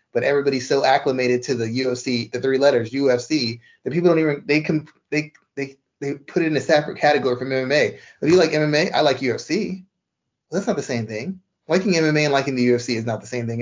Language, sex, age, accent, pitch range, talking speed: English, male, 30-49, American, 130-160 Hz, 225 wpm